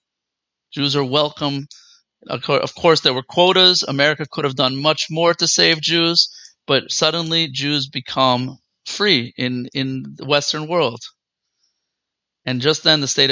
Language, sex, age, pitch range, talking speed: English, male, 30-49, 140-170 Hz, 145 wpm